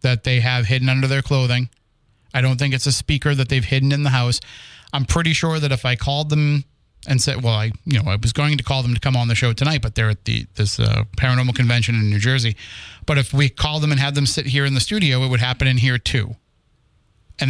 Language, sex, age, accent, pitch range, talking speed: English, male, 30-49, American, 120-140 Hz, 260 wpm